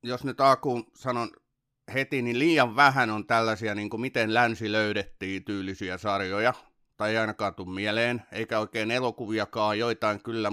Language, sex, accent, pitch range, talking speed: Finnish, male, native, 100-120 Hz, 140 wpm